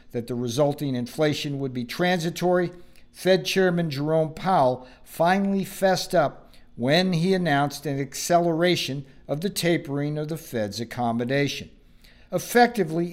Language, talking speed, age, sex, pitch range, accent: English, 125 wpm, 50-69, male, 130-175 Hz, American